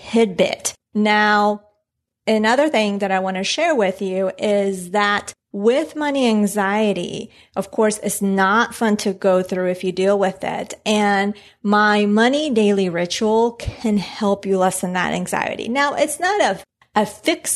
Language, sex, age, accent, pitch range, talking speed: English, female, 30-49, American, 195-230 Hz, 155 wpm